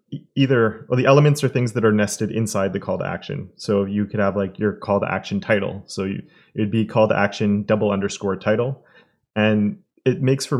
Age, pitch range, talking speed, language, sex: 20-39, 100-115 Hz, 215 wpm, English, male